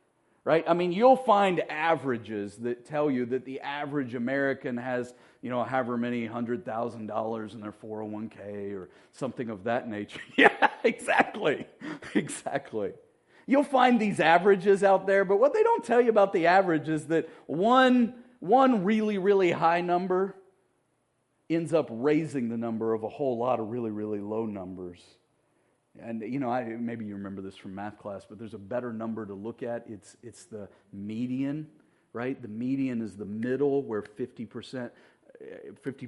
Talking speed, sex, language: 170 wpm, male, English